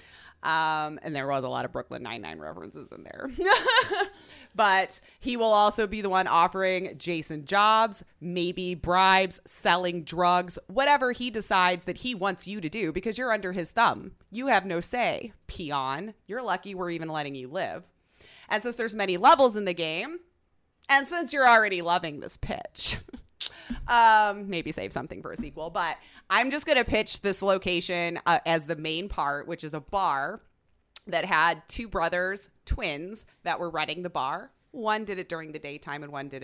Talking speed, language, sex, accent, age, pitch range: 180 wpm, English, female, American, 20-39, 165-225 Hz